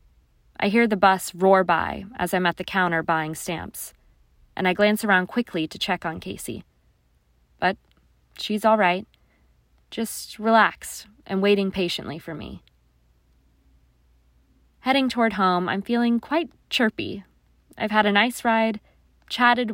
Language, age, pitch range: English, 20-39, 165-220 Hz